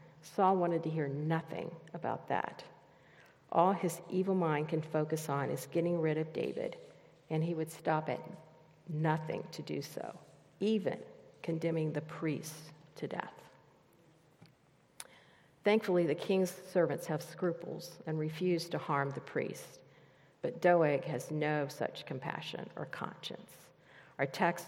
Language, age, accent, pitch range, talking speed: English, 50-69, American, 155-175 Hz, 135 wpm